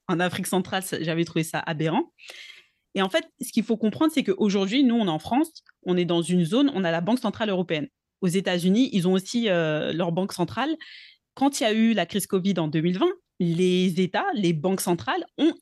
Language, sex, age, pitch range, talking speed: French, female, 20-39, 175-220 Hz, 220 wpm